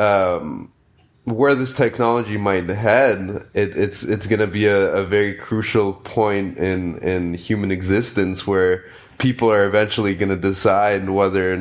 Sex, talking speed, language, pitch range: male, 145 wpm, English, 95-110 Hz